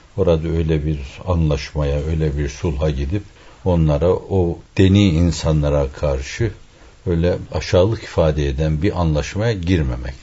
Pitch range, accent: 75-90 Hz, native